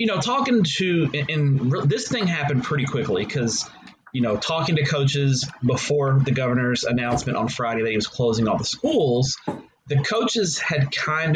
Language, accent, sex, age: English, American, male, 30-49